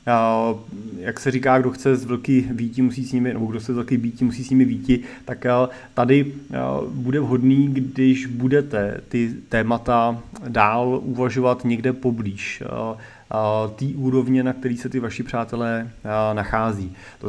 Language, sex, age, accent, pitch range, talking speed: Czech, male, 30-49, native, 115-135 Hz, 140 wpm